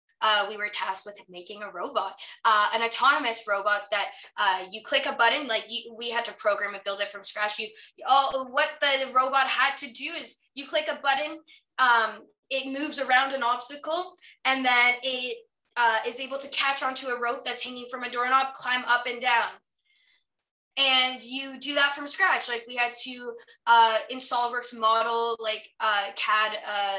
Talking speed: 195 wpm